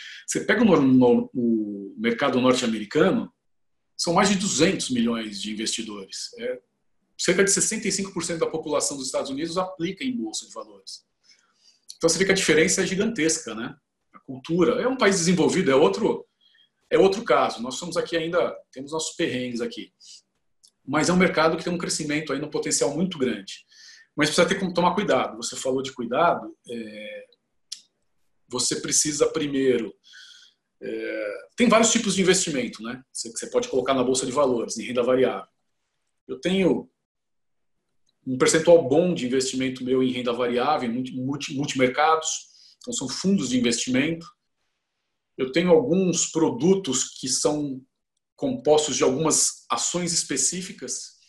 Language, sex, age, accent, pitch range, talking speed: Portuguese, male, 40-59, Brazilian, 130-185 Hz, 155 wpm